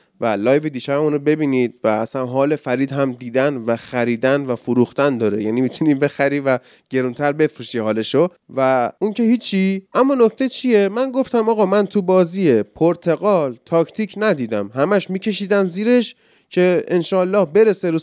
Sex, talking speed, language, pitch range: male, 155 wpm, Persian, 160-225 Hz